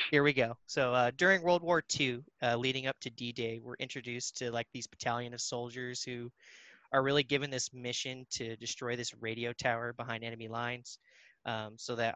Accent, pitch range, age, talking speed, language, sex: American, 120-135 Hz, 20-39, 190 wpm, English, male